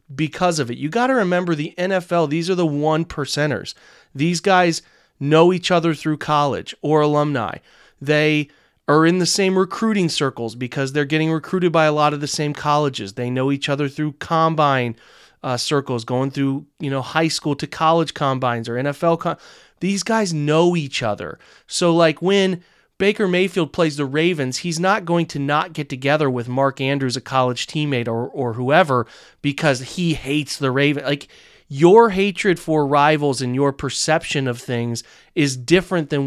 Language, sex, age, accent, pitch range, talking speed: English, male, 30-49, American, 135-170 Hz, 175 wpm